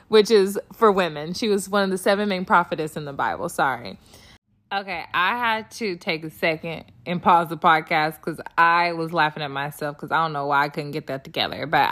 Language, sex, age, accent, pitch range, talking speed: English, female, 20-39, American, 160-210 Hz, 220 wpm